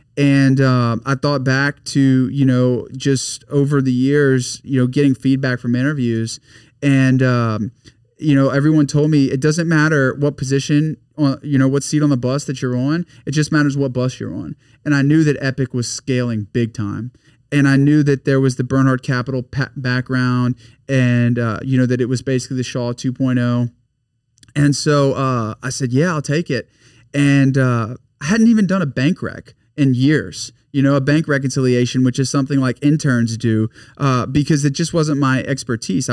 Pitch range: 125-140 Hz